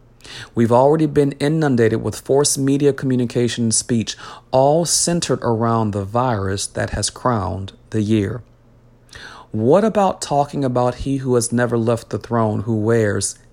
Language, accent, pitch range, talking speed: English, American, 110-130 Hz, 145 wpm